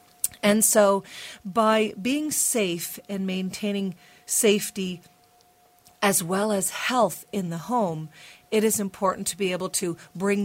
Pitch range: 175-210 Hz